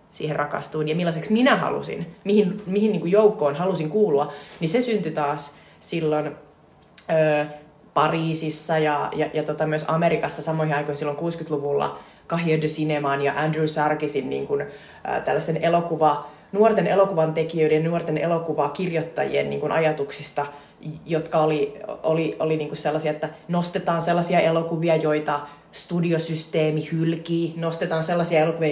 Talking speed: 130 wpm